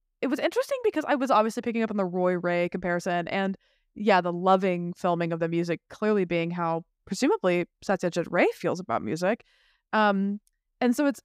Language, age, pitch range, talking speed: English, 20-39, 175-230 Hz, 185 wpm